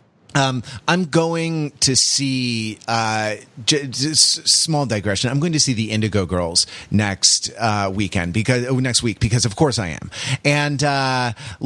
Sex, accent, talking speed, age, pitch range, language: male, American, 160 wpm, 30-49, 115-145 Hz, English